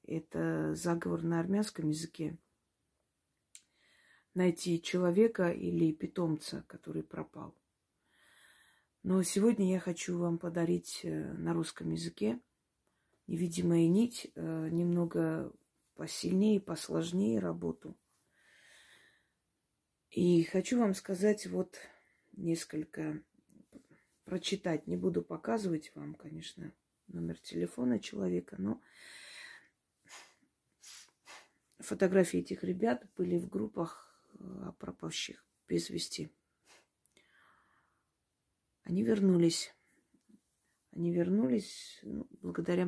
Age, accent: 30-49, native